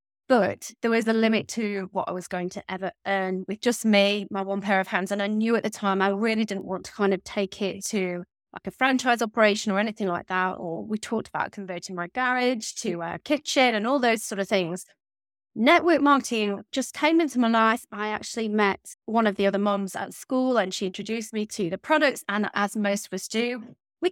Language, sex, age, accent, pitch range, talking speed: English, female, 20-39, British, 195-235 Hz, 230 wpm